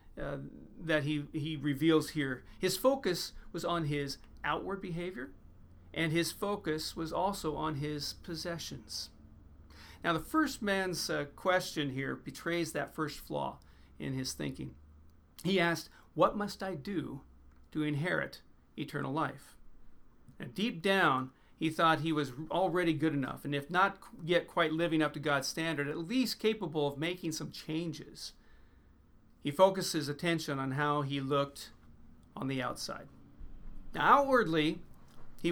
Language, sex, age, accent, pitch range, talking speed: English, male, 40-59, American, 140-175 Hz, 145 wpm